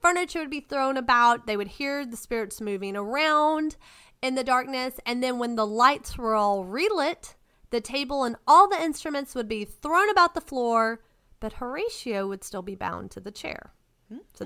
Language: English